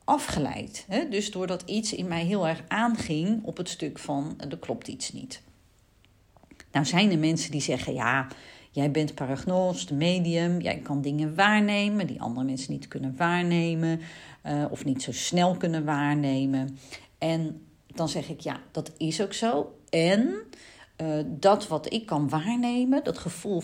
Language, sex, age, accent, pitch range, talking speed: Dutch, female, 40-59, Dutch, 150-205 Hz, 155 wpm